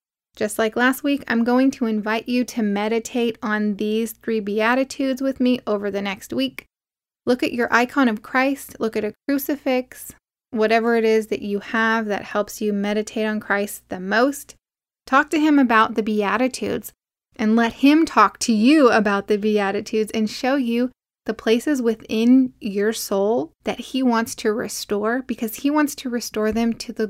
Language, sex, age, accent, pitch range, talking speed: English, female, 10-29, American, 210-245 Hz, 180 wpm